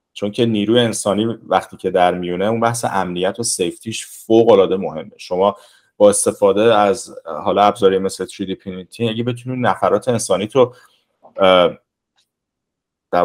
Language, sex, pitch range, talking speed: Persian, male, 95-125 Hz, 135 wpm